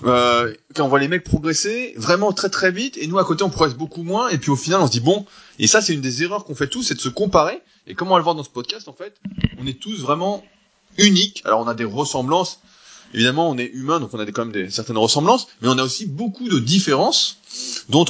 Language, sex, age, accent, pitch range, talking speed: French, male, 20-39, French, 130-180 Hz, 270 wpm